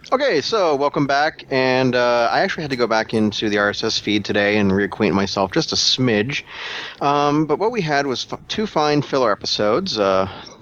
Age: 30-49